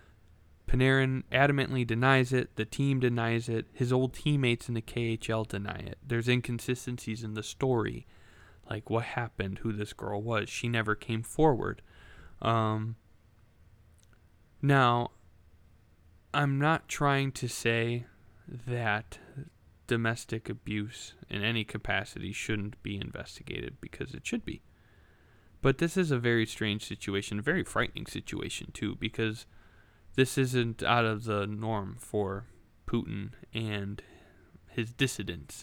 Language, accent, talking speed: English, American, 130 wpm